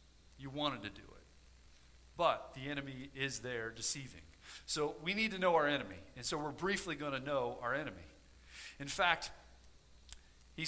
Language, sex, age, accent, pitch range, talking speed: English, male, 40-59, American, 130-195 Hz, 170 wpm